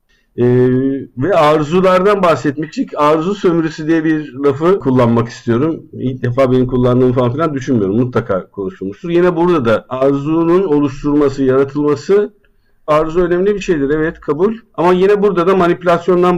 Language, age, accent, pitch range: Turkish, 50-69, native, 120-165 Hz